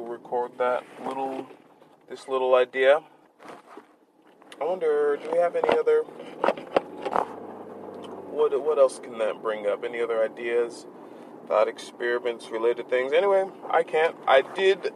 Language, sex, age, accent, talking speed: English, male, 20-39, American, 130 wpm